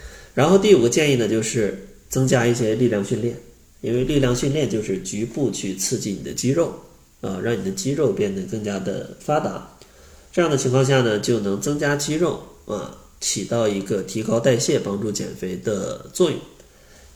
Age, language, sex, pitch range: 20-39, Chinese, male, 105-135 Hz